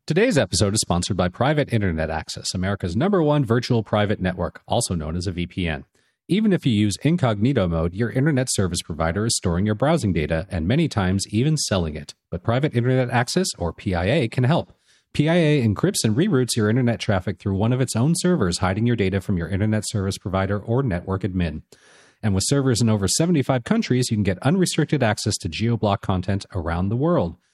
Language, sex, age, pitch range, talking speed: English, male, 40-59, 95-130 Hz, 195 wpm